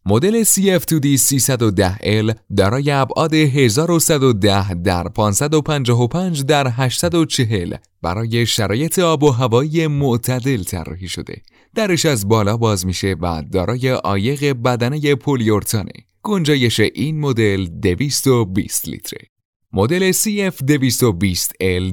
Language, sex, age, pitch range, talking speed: Persian, male, 30-49, 105-150 Hz, 95 wpm